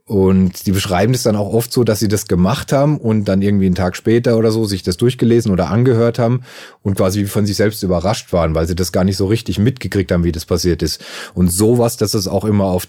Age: 30-49